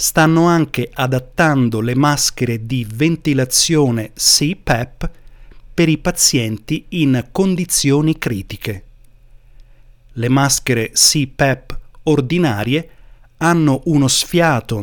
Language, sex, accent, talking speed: Italian, male, native, 85 wpm